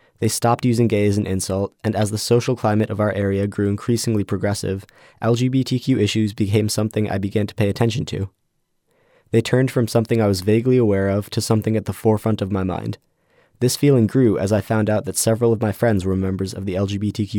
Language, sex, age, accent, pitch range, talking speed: English, male, 20-39, American, 100-115 Hz, 215 wpm